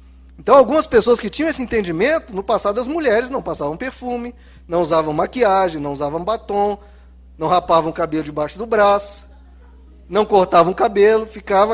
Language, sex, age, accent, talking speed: Portuguese, male, 20-39, Brazilian, 165 wpm